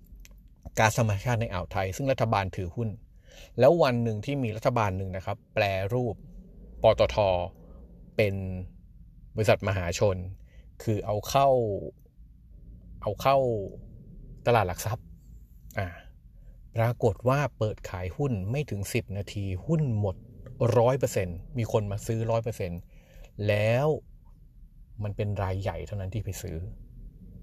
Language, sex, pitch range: Thai, male, 95-125 Hz